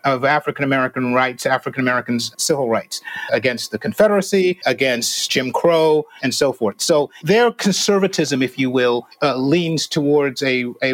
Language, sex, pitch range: English, male, 130-175 Hz